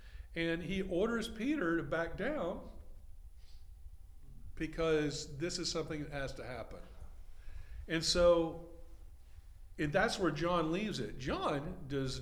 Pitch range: 105-170 Hz